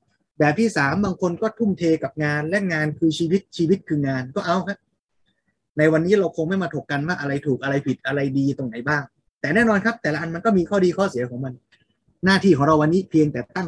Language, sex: Thai, male